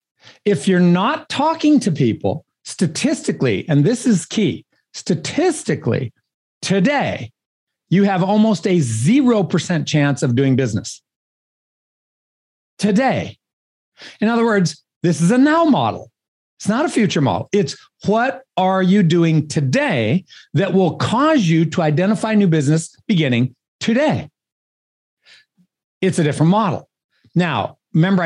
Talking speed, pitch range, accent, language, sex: 125 wpm, 155-220 Hz, American, English, male